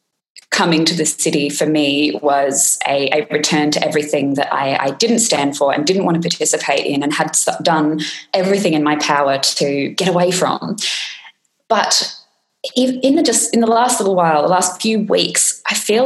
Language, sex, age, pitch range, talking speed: English, female, 20-39, 155-190 Hz, 180 wpm